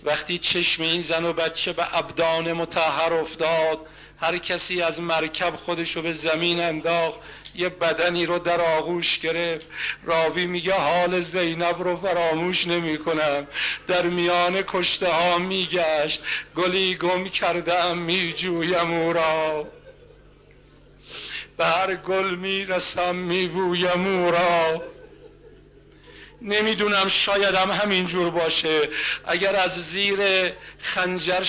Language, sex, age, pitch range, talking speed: Persian, male, 50-69, 170-195 Hz, 110 wpm